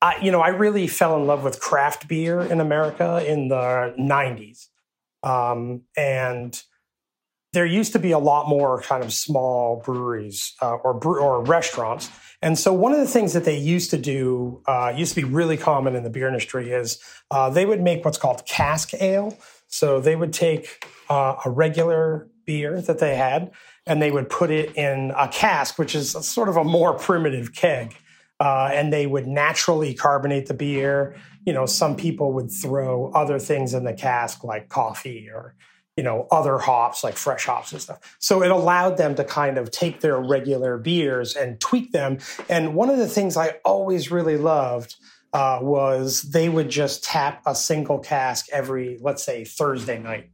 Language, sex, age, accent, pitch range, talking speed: English, male, 30-49, American, 130-165 Hz, 185 wpm